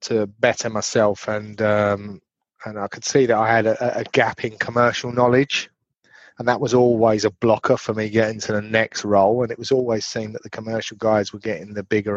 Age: 30-49